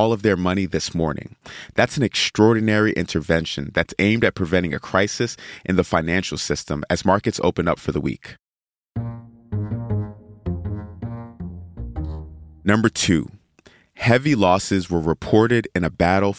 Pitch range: 90-110 Hz